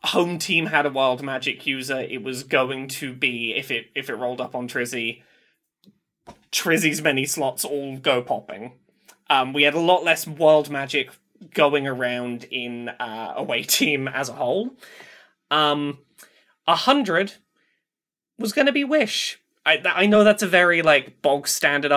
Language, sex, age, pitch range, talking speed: English, male, 20-39, 135-180 Hz, 165 wpm